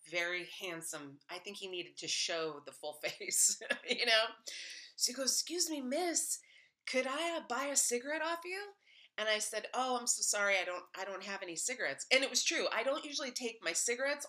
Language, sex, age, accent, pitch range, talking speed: English, female, 30-49, American, 195-300 Hz, 215 wpm